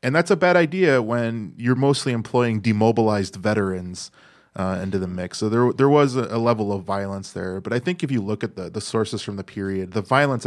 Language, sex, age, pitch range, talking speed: English, male, 20-39, 95-110 Hz, 230 wpm